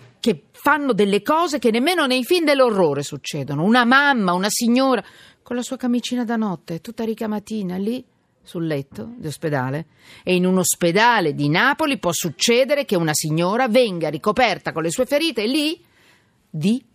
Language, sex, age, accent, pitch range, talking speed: Italian, female, 50-69, native, 155-215 Hz, 165 wpm